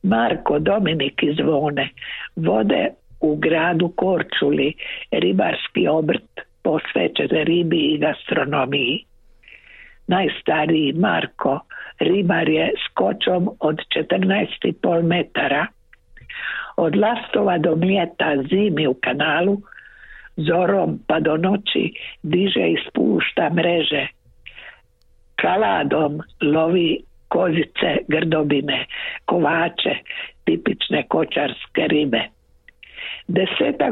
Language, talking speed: Croatian, 80 wpm